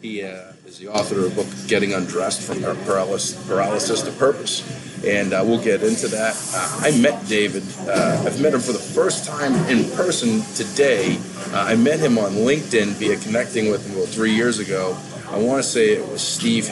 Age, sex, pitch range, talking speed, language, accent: 40-59, male, 105-125 Hz, 210 wpm, English, American